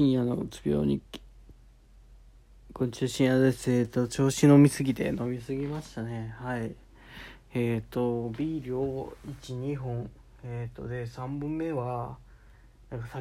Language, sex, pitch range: Japanese, male, 120-145 Hz